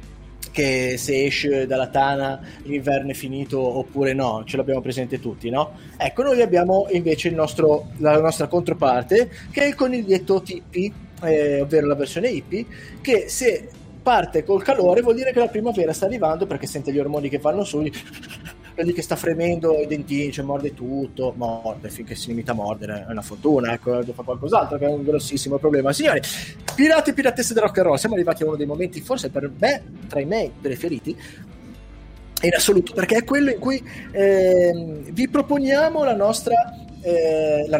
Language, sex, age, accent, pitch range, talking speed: Italian, male, 20-39, native, 135-200 Hz, 175 wpm